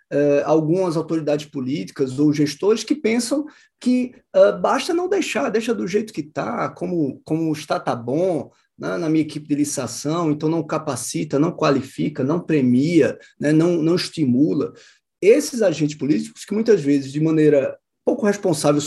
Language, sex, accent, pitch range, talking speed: Portuguese, male, Brazilian, 155-245 Hz, 160 wpm